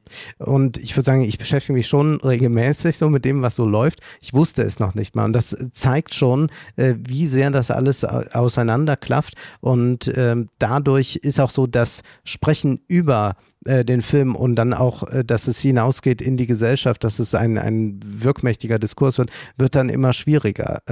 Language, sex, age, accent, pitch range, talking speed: German, male, 50-69, German, 125-150 Hz, 170 wpm